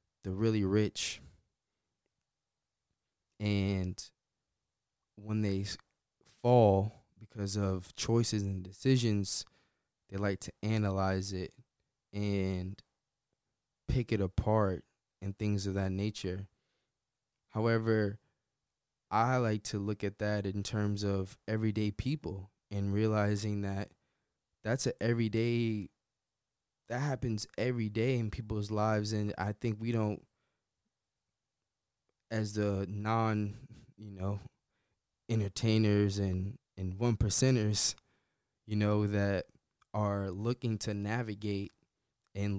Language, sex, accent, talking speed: English, male, American, 105 wpm